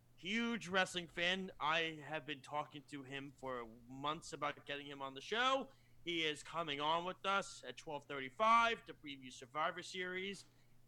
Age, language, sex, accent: 30-49, English, male, American